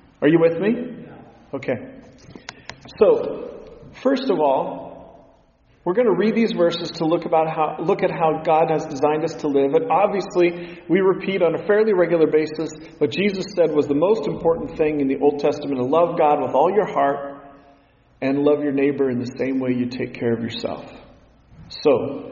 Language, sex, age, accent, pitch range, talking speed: English, male, 40-59, American, 150-185 Hz, 190 wpm